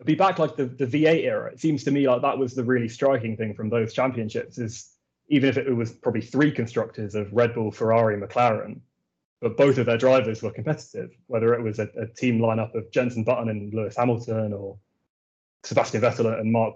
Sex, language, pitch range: male, English, 110-120 Hz